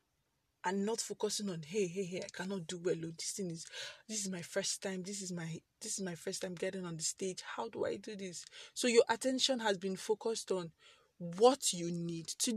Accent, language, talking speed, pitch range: Nigerian, English, 225 wpm, 185-240 Hz